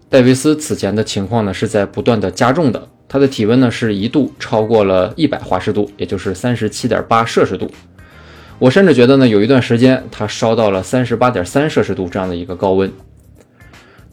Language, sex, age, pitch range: Chinese, male, 20-39, 95-130 Hz